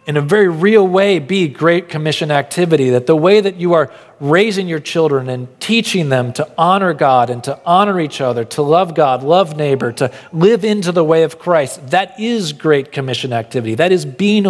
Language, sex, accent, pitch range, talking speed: English, male, American, 135-170 Hz, 205 wpm